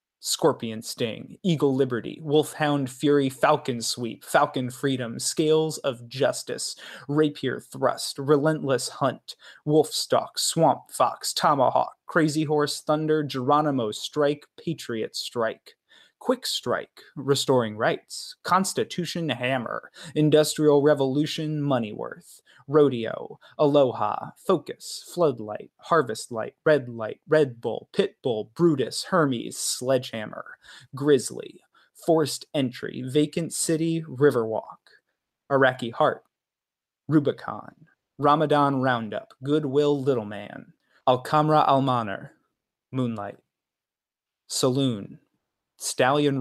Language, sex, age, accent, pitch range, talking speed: English, male, 20-39, American, 125-155 Hz, 95 wpm